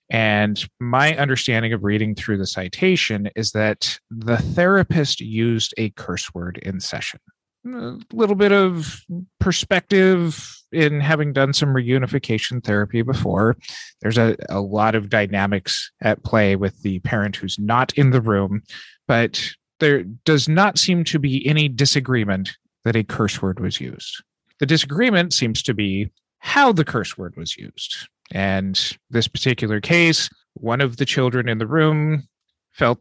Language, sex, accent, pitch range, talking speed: English, male, American, 105-155 Hz, 155 wpm